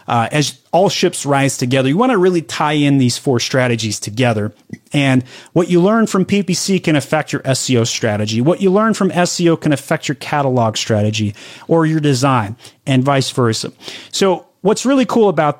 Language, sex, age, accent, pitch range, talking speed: English, male, 30-49, American, 130-190 Hz, 185 wpm